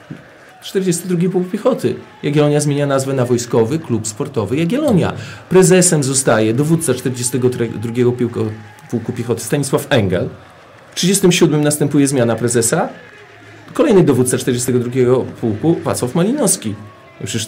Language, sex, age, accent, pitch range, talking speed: Polish, male, 40-59, native, 130-165 Hz, 105 wpm